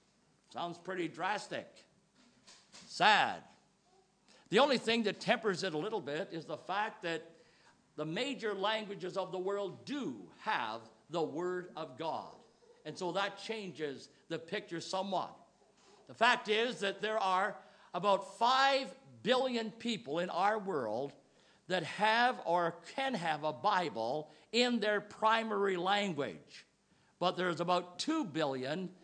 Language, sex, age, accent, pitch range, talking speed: English, male, 50-69, American, 180-270 Hz, 135 wpm